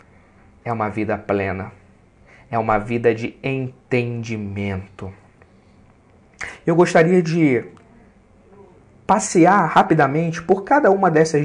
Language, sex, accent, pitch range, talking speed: Portuguese, male, Brazilian, 110-145 Hz, 95 wpm